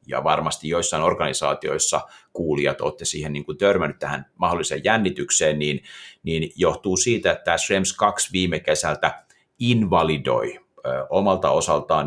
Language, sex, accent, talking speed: Finnish, male, native, 135 wpm